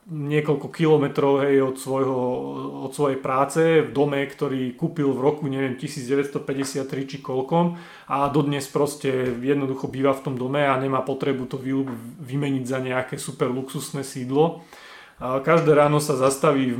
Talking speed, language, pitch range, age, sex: 145 wpm, Slovak, 130-145 Hz, 30-49, male